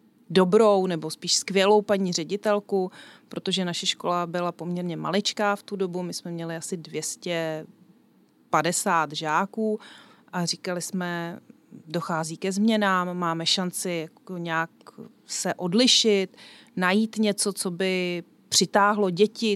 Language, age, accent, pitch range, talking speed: Czech, 30-49, native, 180-220 Hz, 115 wpm